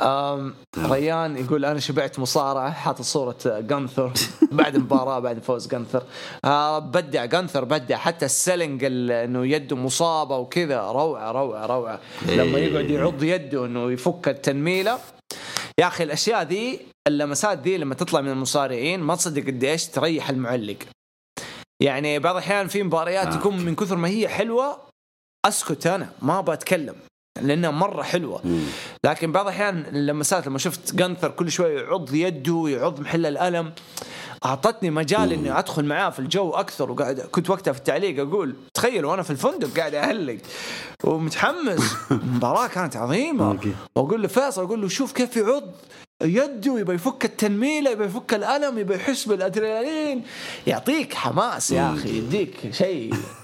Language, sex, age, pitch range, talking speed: English, male, 20-39, 135-195 Hz, 145 wpm